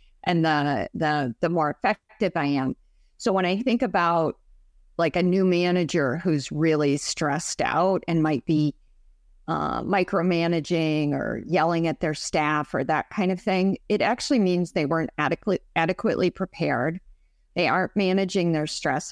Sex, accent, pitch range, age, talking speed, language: female, American, 150-185 Hz, 50-69, 155 wpm, English